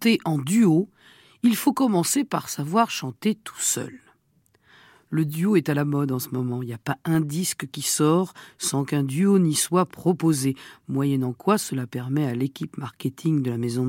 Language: French